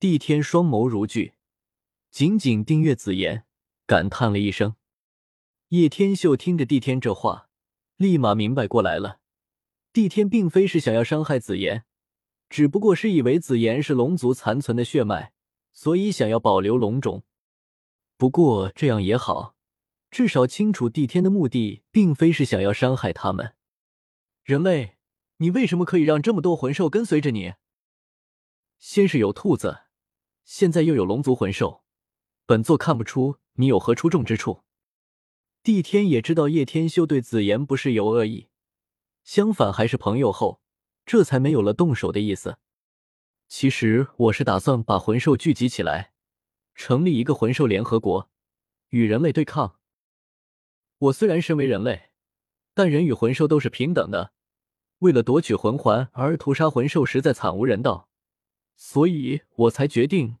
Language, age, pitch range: Chinese, 20-39, 110-160 Hz